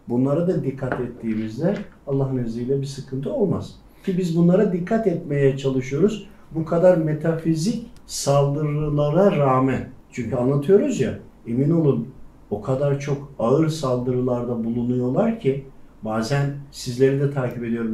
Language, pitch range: Turkish, 125-160 Hz